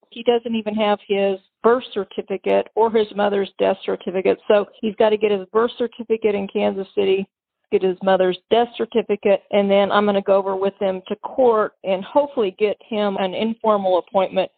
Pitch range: 195-230 Hz